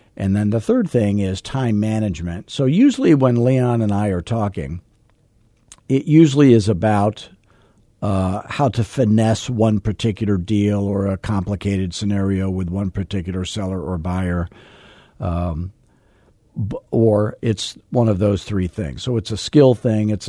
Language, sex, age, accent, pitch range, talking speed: English, male, 50-69, American, 100-120 Hz, 150 wpm